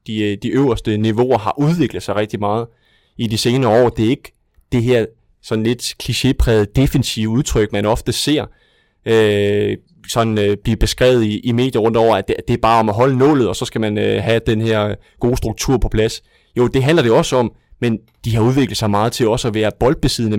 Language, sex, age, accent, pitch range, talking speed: Danish, male, 20-39, native, 105-125 Hz, 220 wpm